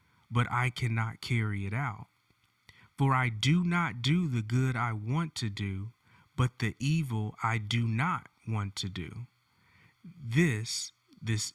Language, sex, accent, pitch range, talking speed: English, male, American, 115-150 Hz, 145 wpm